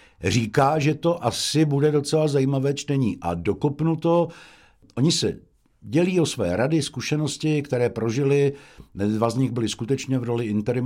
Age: 60-79